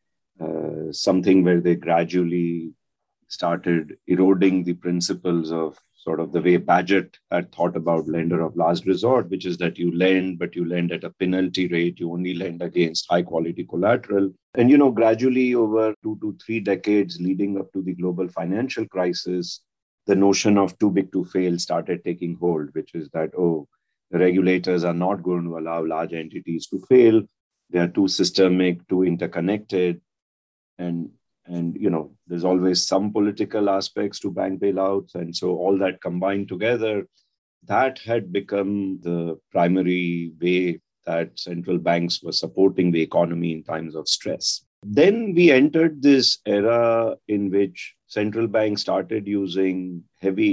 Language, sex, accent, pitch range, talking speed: English, male, Indian, 85-100 Hz, 160 wpm